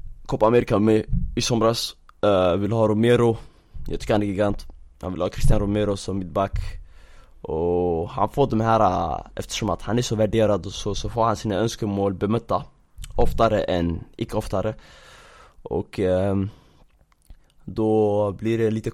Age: 20-39